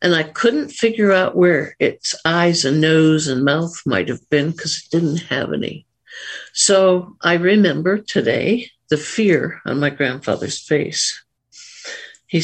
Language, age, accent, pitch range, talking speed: English, 60-79, American, 155-195 Hz, 150 wpm